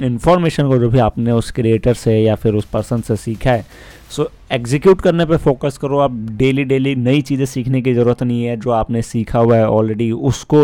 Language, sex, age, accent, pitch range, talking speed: Hindi, male, 20-39, native, 115-130 Hz, 220 wpm